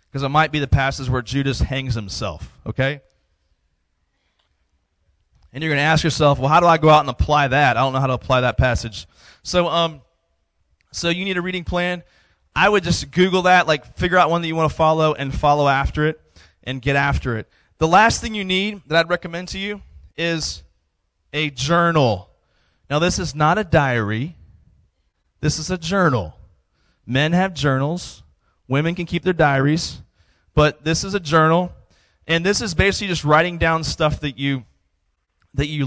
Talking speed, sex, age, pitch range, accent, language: 185 wpm, male, 20-39, 110-155 Hz, American, English